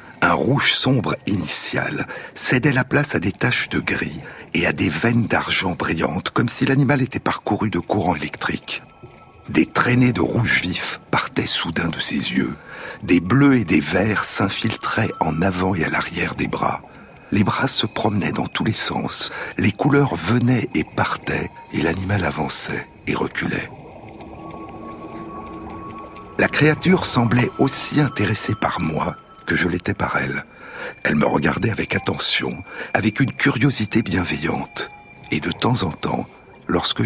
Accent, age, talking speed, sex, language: French, 60-79, 150 wpm, male, French